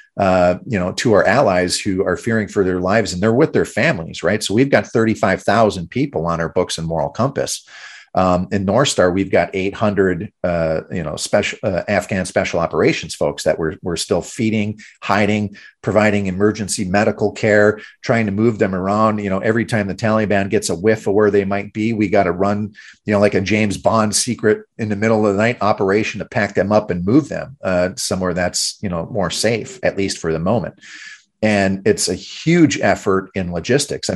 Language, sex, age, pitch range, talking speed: English, male, 40-59, 95-110 Hz, 205 wpm